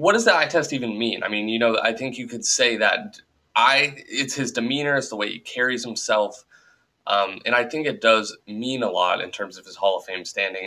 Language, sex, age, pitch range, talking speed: English, male, 20-39, 105-135 Hz, 245 wpm